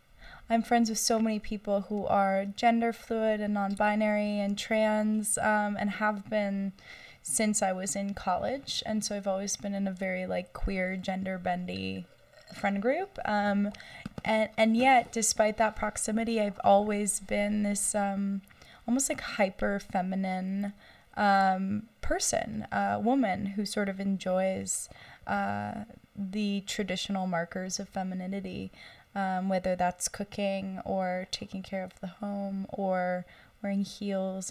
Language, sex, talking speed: English, female, 135 wpm